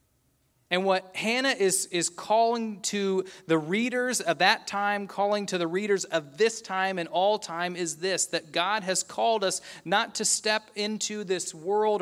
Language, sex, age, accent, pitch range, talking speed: English, male, 30-49, American, 160-210 Hz, 175 wpm